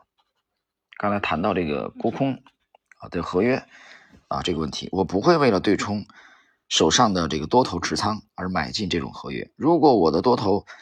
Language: Chinese